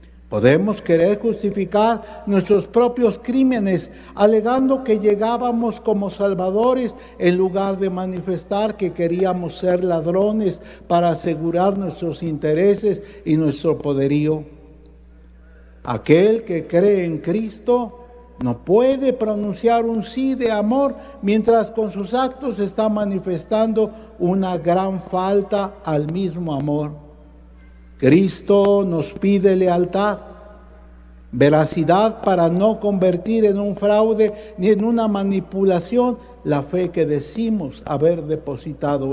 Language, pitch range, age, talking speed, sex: English, 155-215 Hz, 60-79, 110 wpm, male